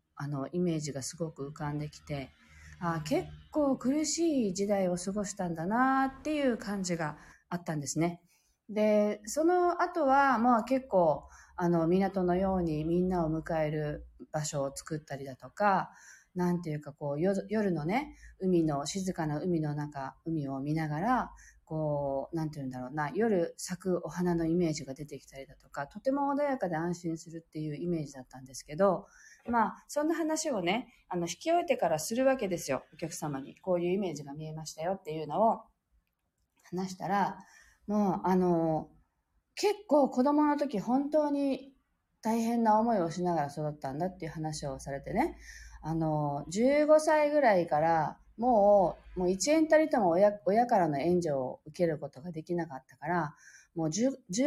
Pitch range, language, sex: 155-230 Hz, Japanese, female